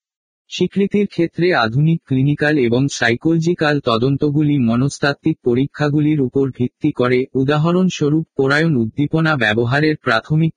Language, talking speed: Bengali, 95 wpm